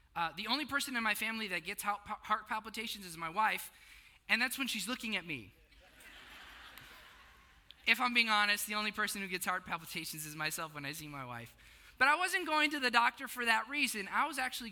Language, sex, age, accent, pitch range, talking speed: English, male, 20-39, American, 180-235 Hz, 210 wpm